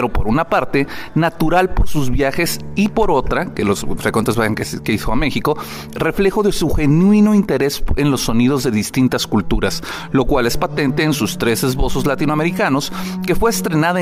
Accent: Mexican